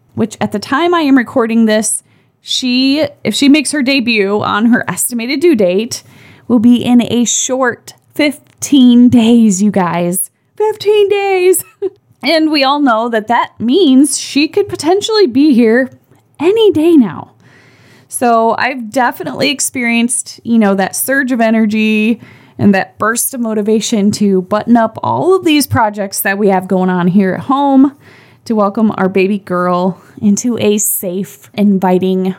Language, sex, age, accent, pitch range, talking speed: English, female, 20-39, American, 195-265 Hz, 155 wpm